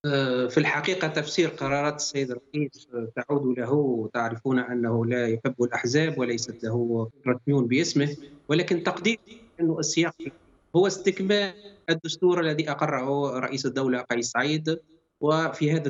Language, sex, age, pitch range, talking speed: English, male, 30-49, 125-165 Hz, 120 wpm